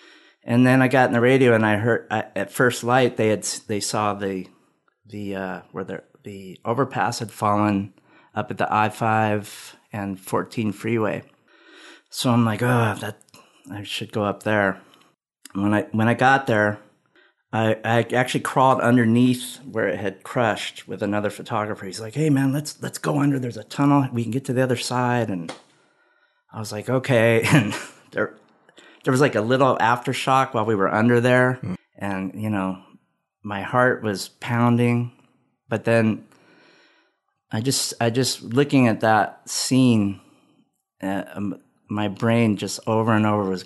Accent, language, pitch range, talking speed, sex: American, English, 100-125 Hz, 170 wpm, male